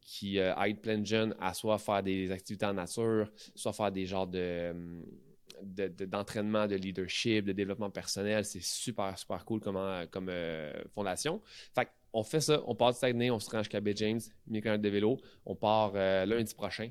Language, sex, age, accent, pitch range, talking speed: French, male, 20-39, Canadian, 100-115 Hz, 200 wpm